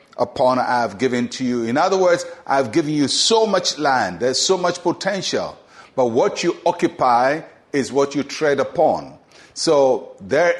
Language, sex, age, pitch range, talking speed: English, male, 50-69, 130-175 Hz, 170 wpm